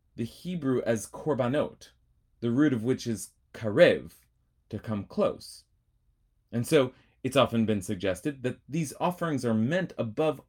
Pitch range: 105-135 Hz